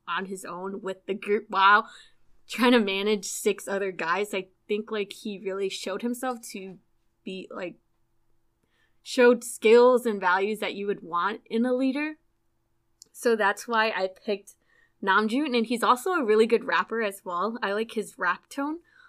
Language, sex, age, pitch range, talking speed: English, female, 20-39, 195-235 Hz, 170 wpm